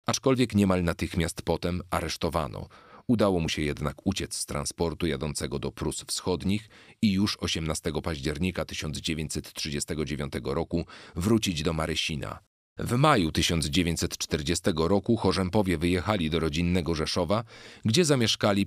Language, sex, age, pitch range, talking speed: Polish, male, 40-59, 80-105 Hz, 115 wpm